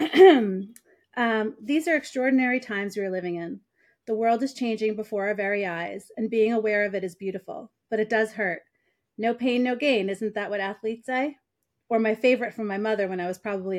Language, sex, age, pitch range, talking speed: English, female, 30-49, 200-240 Hz, 205 wpm